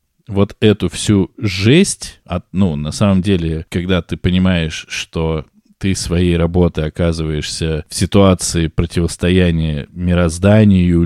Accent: native